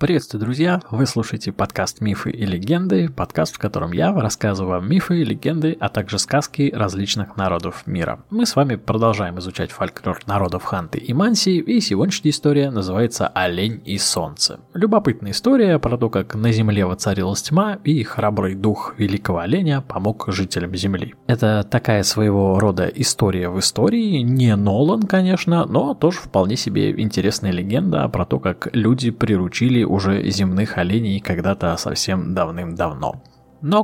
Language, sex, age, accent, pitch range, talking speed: Russian, male, 20-39, native, 95-145 Hz, 150 wpm